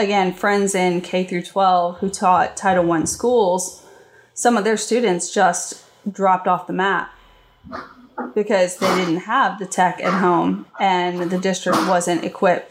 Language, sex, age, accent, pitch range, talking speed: English, female, 20-39, American, 180-225 Hz, 155 wpm